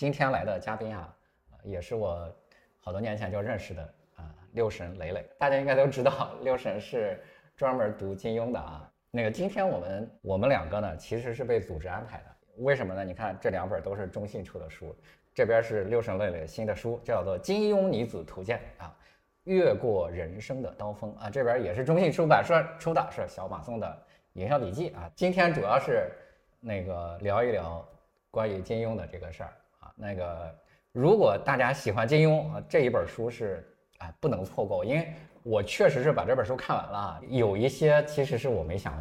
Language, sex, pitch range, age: Chinese, male, 100-150 Hz, 20-39